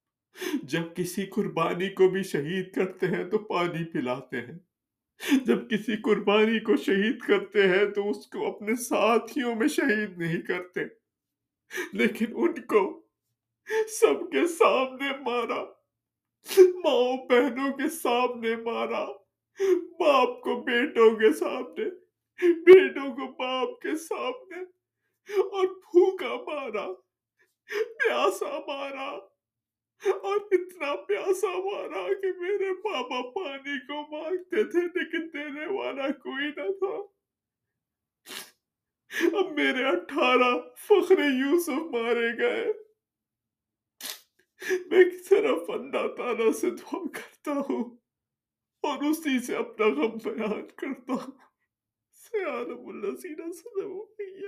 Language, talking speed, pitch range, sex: Urdu, 80 wpm, 225-380 Hz, male